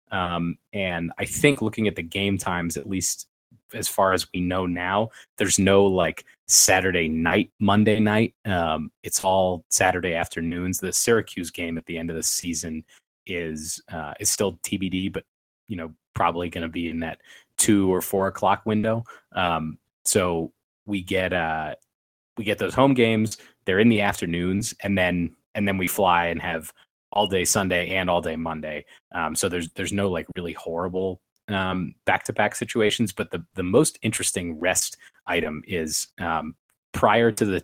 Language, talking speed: English, 175 wpm